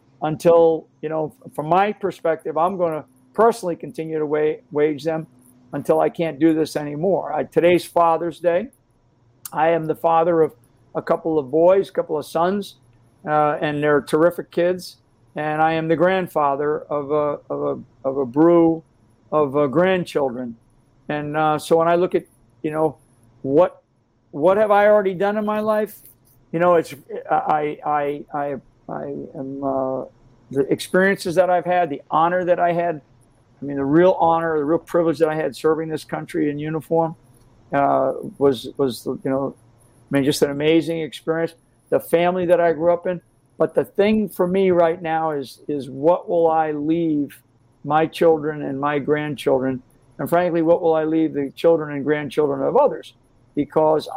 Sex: male